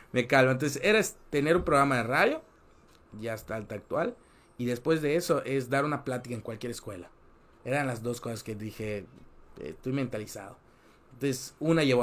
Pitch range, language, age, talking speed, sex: 110-130 Hz, Spanish, 30-49, 180 wpm, male